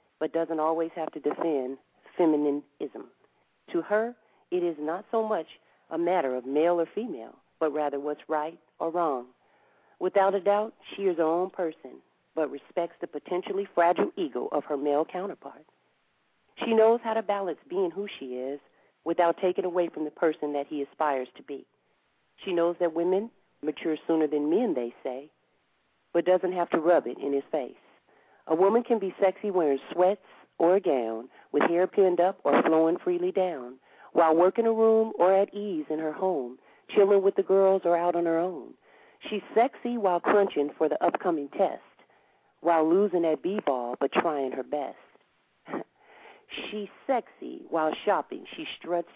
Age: 40-59